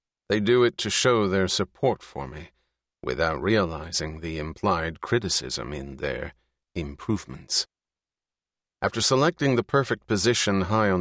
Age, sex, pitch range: 40-59, male, 90-115 Hz